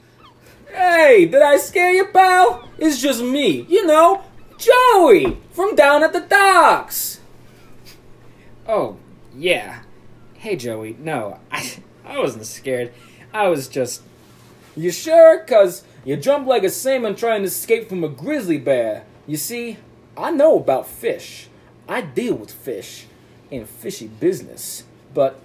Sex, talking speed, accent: male, 135 wpm, American